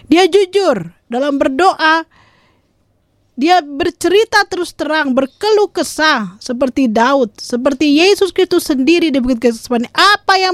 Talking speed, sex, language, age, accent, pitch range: 110 wpm, female, Indonesian, 40-59, native, 235-360 Hz